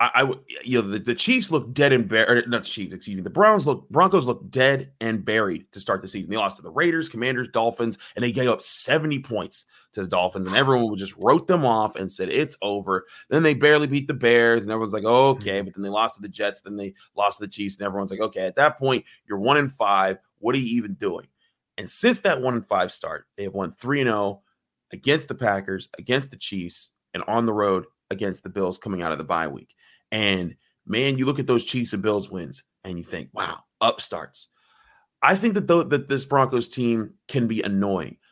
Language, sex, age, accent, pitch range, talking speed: English, male, 30-49, American, 105-140 Hz, 240 wpm